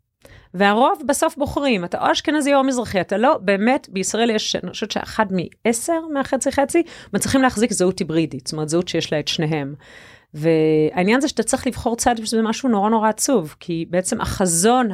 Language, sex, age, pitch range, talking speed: Hebrew, female, 30-49, 170-245 Hz, 175 wpm